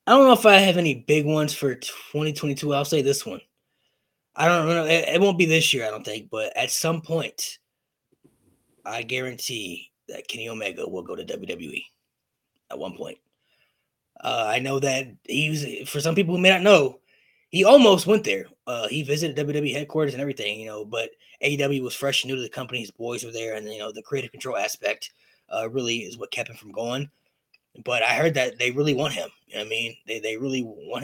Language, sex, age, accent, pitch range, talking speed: English, male, 20-39, American, 125-165 Hz, 215 wpm